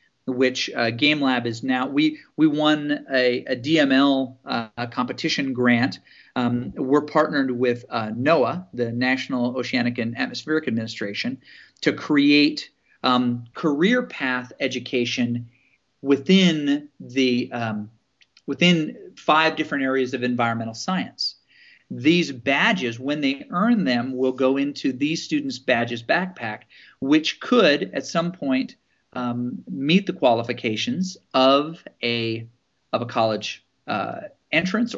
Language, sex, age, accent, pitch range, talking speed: English, male, 40-59, American, 125-155 Hz, 115 wpm